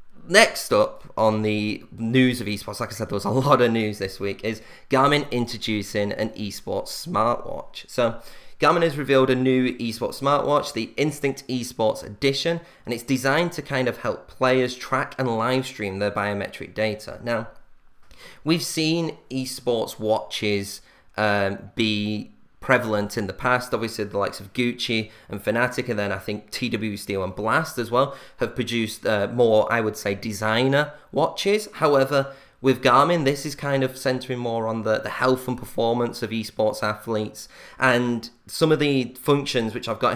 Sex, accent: male, British